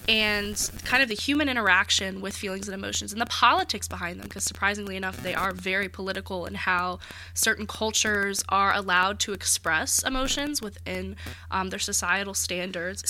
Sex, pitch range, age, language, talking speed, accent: female, 180-240 Hz, 10-29, English, 165 wpm, American